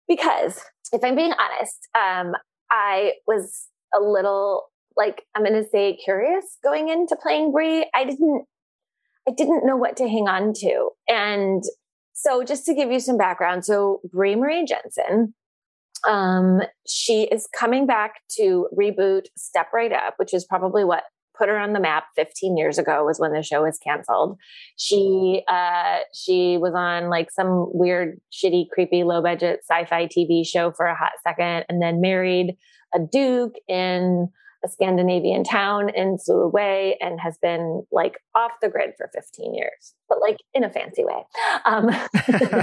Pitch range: 185-305 Hz